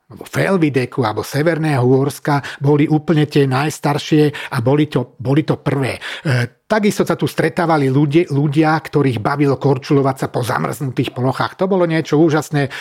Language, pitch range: Slovak, 135-160 Hz